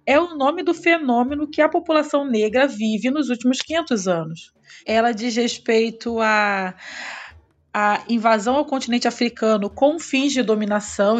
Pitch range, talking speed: 210-270 Hz, 145 wpm